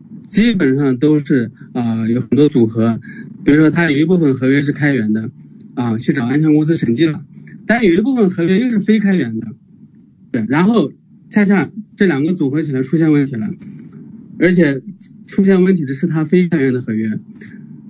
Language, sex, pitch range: Chinese, male, 140-205 Hz